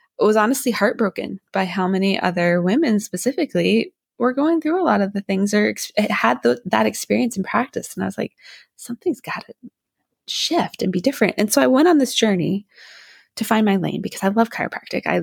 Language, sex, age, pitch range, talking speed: English, female, 20-39, 185-255 Hz, 200 wpm